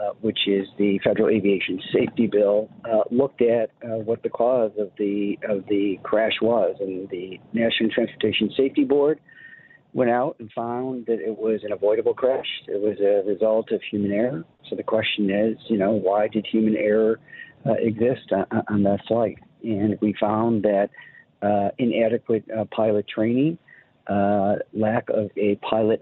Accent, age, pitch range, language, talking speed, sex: American, 50-69, 105-120 Hz, English, 170 wpm, male